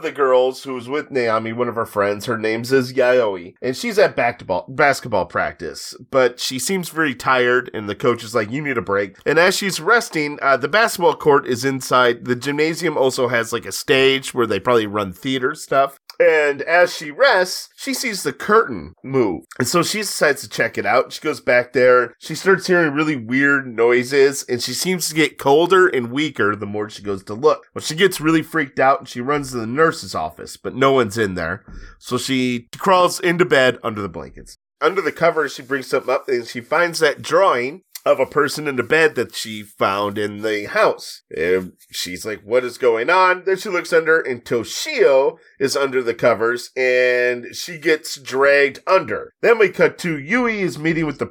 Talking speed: 210 wpm